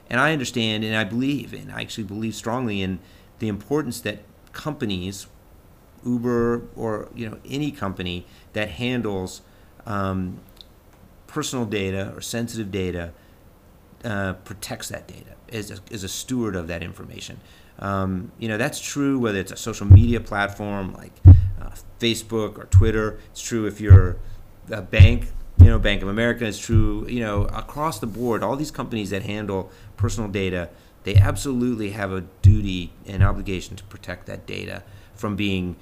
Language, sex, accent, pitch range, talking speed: English, male, American, 95-115 Hz, 160 wpm